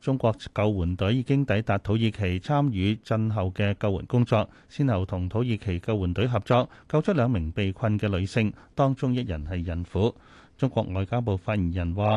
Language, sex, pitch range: Chinese, male, 100-130 Hz